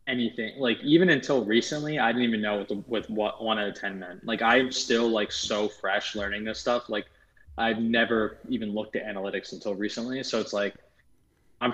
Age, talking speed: 20-39, 200 wpm